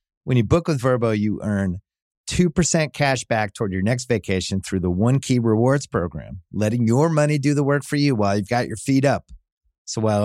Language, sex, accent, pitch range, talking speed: English, male, American, 100-150 Hz, 210 wpm